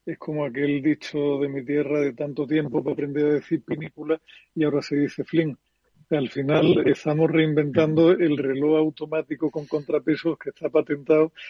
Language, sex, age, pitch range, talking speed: Spanish, male, 50-69, 140-155 Hz, 165 wpm